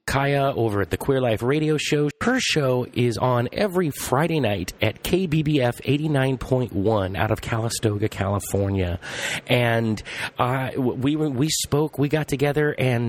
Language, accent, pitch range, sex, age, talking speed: English, American, 105-150 Hz, male, 30-49, 140 wpm